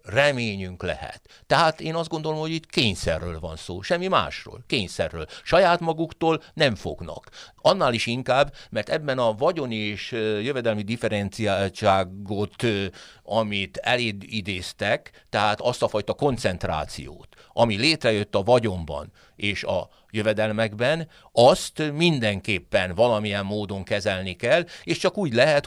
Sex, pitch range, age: male, 95-130 Hz, 60-79